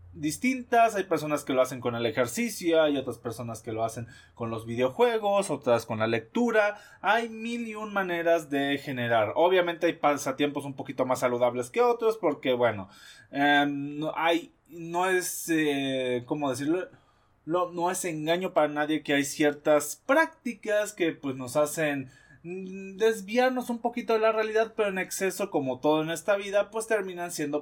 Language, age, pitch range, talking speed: Spanish, 20-39, 130-210 Hz, 170 wpm